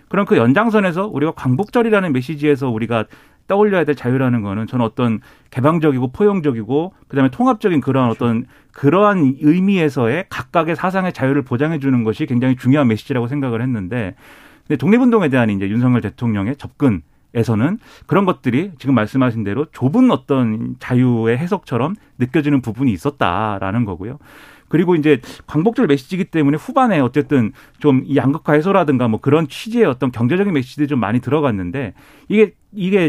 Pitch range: 120-165 Hz